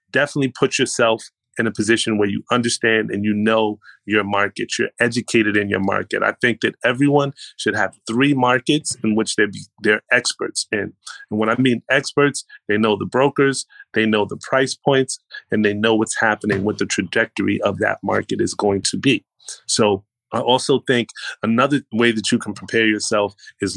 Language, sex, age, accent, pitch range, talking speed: English, male, 30-49, American, 105-125 Hz, 185 wpm